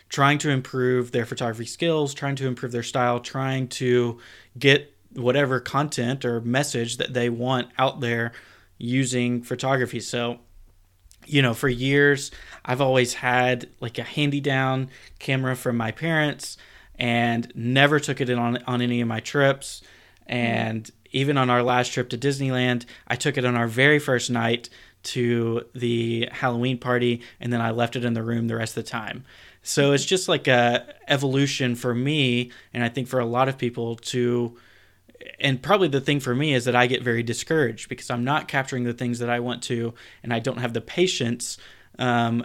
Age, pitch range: 20-39, 120-130 Hz